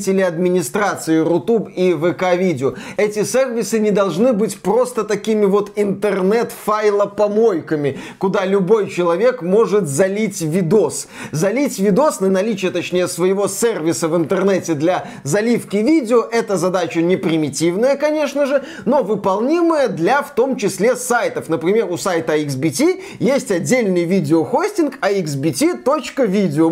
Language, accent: Russian, native